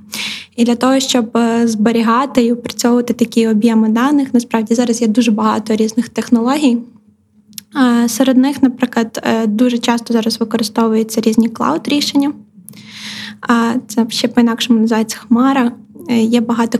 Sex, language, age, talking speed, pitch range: female, Ukrainian, 20-39, 120 wpm, 225-250 Hz